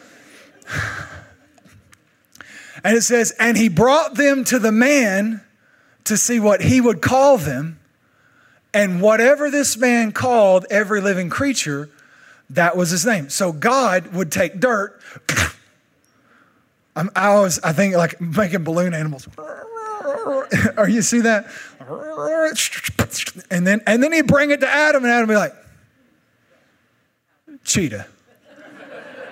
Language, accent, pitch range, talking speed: English, American, 180-280 Hz, 120 wpm